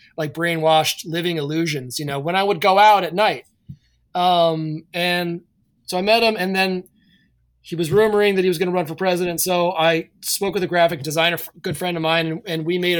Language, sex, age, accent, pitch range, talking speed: English, male, 20-39, American, 155-175 Hz, 215 wpm